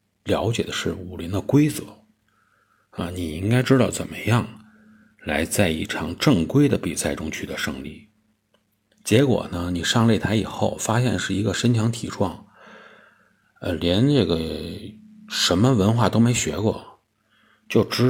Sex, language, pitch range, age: male, Chinese, 90-125 Hz, 50-69